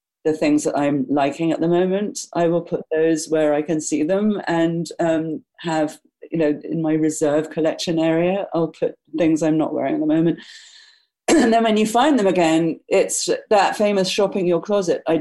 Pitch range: 160-225 Hz